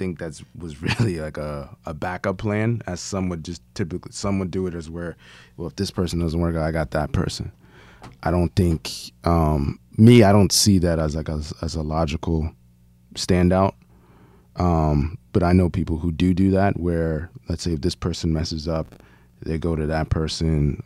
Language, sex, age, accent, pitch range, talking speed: English, male, 20-39, American, 80-95 Hz, 200 wpm